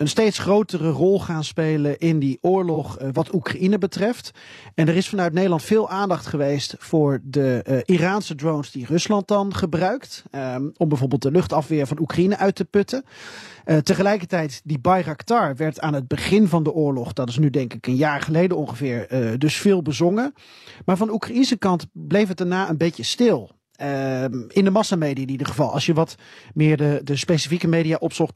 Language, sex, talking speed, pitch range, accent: Dutch, male, 190 wpm, 150-185 Hz, Dutch